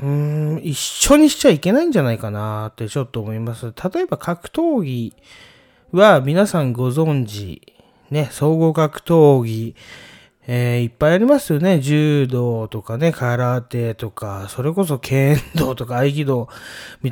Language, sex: Japanese, male